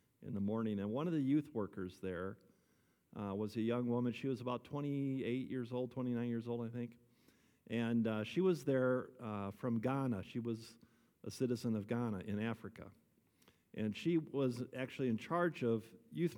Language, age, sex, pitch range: English, 50-69, male, 105-130 Hz